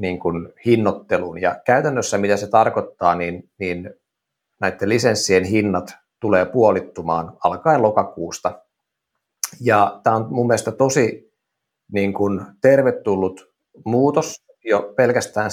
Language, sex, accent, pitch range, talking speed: Finnish, male, native, 100-130 Hz, 110 wpm